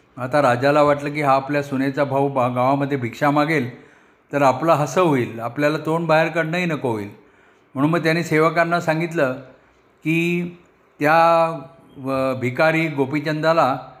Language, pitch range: Marathi, 135-160 Hz